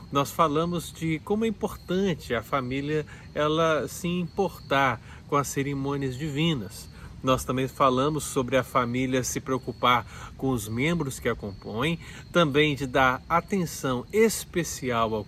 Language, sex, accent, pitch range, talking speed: Portuguese, male, Brazilian, 120-165 Hz, 135 wpm